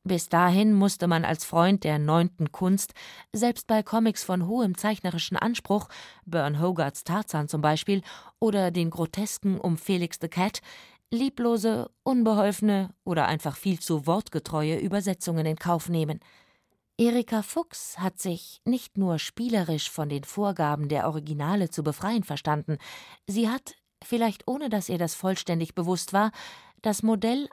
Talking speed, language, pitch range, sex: 145 wpm, German, 165-210 Hz, female